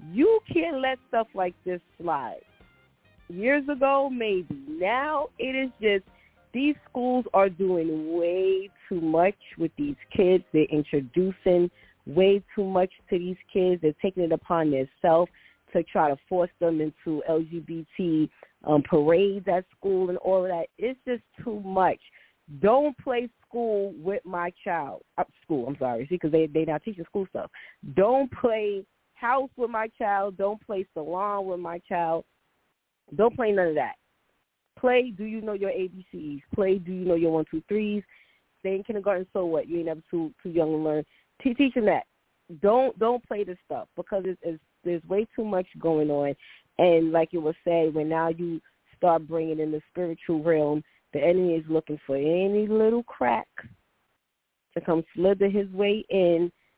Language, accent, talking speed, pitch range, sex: English, American, 170 wpm, 165-210 Hz, female